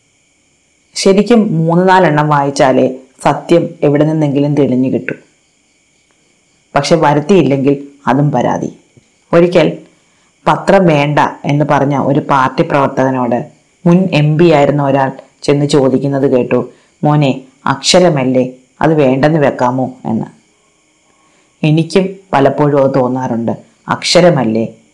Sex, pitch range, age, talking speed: female, 135-155 Hz, 30-49, 95 wpm